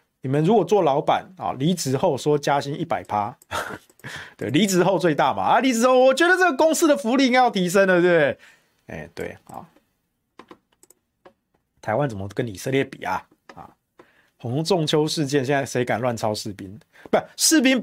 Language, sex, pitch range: Chinese, male, 120-185 Hz